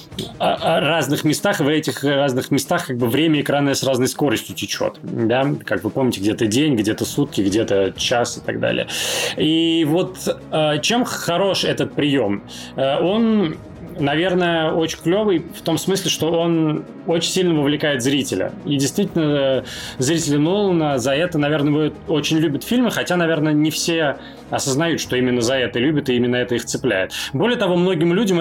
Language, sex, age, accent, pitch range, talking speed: Russian, male, 20-39, native, 130-160 Hz, 160 wpm